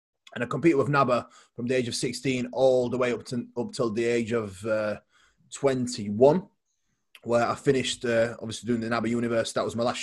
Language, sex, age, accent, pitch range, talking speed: Danish, male, 20-39, British, 115-140 Hz, 210 wpm